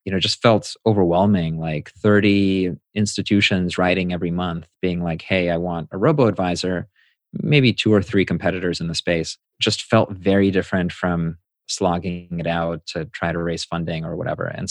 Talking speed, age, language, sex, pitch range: 170 wpm, 30-49, English, male, 90-110 Hz